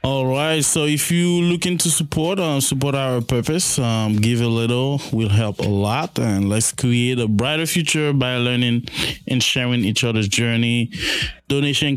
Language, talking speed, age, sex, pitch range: English, 175 wpm, 20-39, male, 105-130 Hz